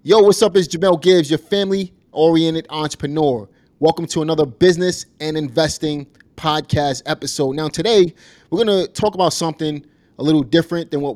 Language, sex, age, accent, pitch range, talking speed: English, male, 30-49, American, 125-155 Hz, 155 wpm